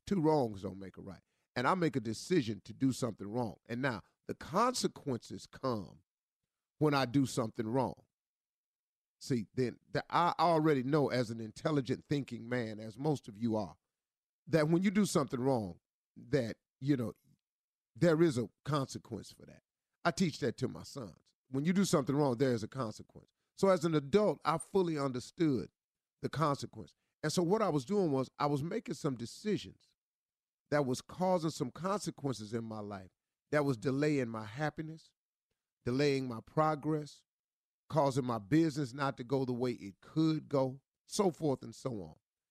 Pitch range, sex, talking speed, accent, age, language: 115-155 Hz, male, 175 wpm, American, 40-59, English